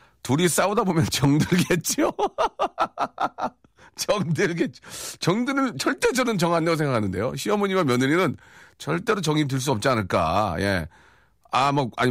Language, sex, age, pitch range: Korean, male, 40-59, 110-185 Hz